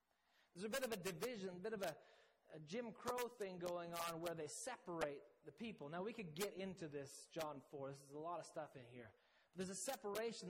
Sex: male